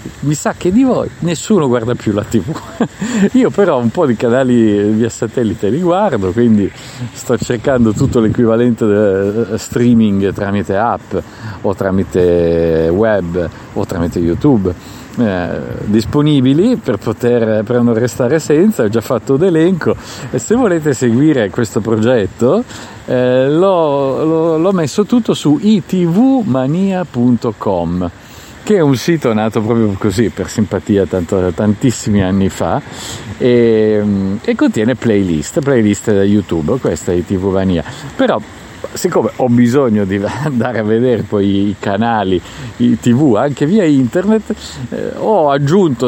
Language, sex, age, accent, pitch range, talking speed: Italian, male, 50-69, native, 105-145 Hz, 135 wpm